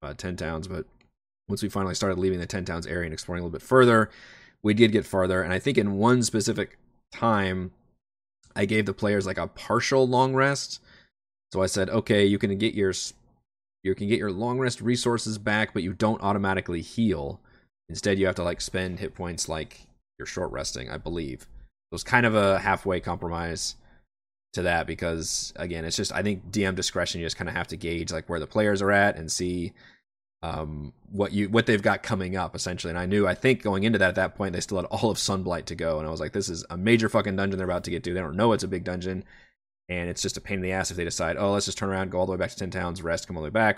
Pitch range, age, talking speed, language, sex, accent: 85-110 Hz, 20-39, 255 wpm, English, male, American